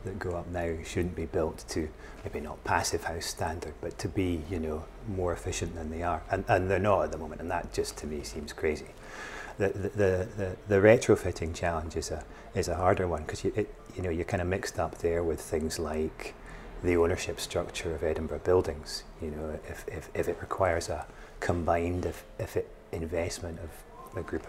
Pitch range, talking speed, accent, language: 80-95 Hz, 210 wpm, British, English